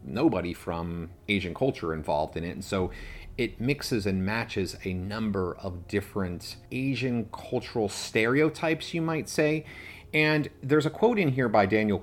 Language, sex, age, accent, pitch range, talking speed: English, male, 30-49, American, 90-105 Hz, 155 wpm